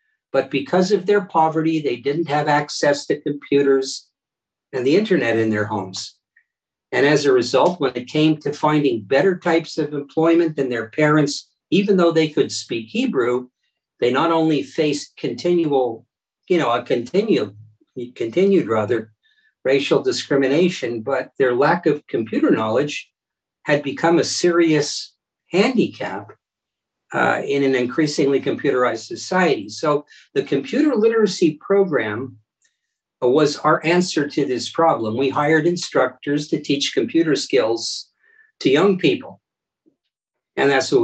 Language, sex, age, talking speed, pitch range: English, male, 50-69, 135 wpm, 140-205 Hz